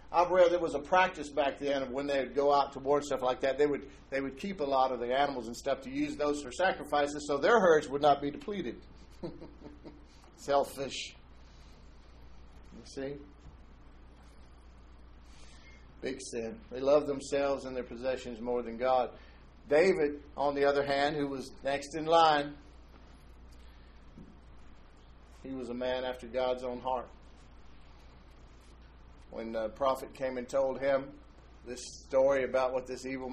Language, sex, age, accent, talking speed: English, male, 50-69, American, 160 wpm